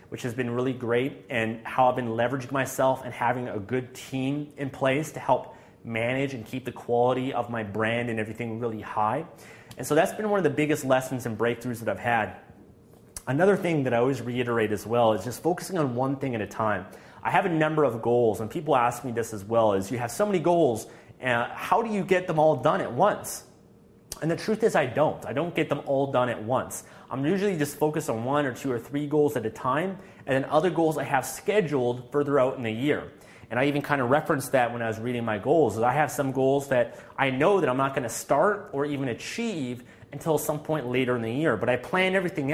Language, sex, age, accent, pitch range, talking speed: English, male, 30-49, American, 120-150 Hz, 245 wpm